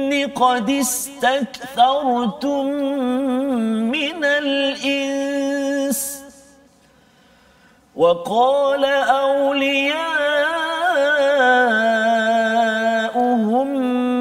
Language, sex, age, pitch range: Malayalam, male, 40-59, 225-275 Hz